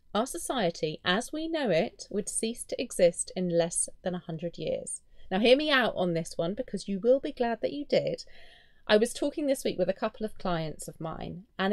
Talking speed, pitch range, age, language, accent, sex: 225 wpm, 170-225 Hz, 30-49, English, British, female